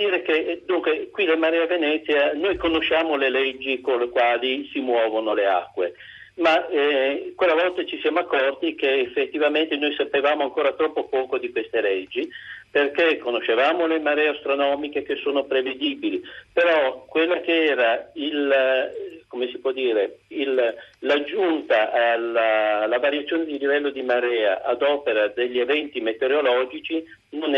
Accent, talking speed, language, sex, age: native, 145 wpm, Italian, male, 50-69